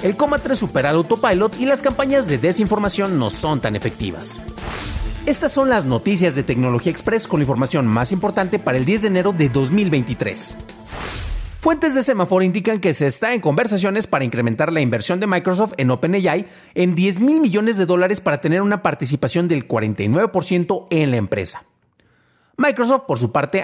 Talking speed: 180 wpm